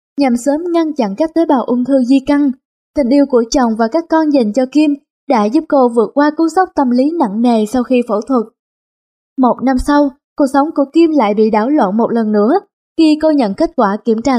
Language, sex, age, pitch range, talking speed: Vietnamese, female, 10-29, 230-300 Hz, 240 wpm